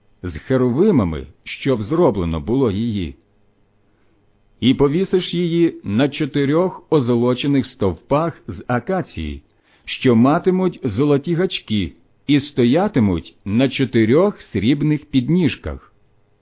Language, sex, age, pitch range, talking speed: Ukrainian, male, 50-69, 100-150 Hz, 90 wpm